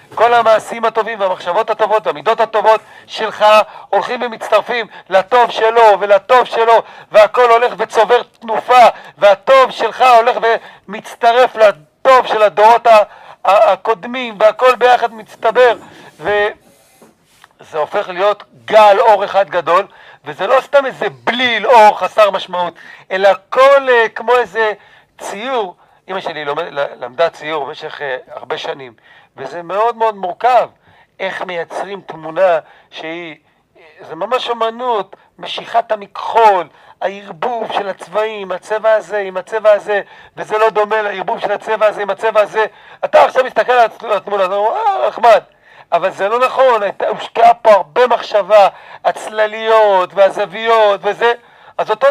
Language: Hebrew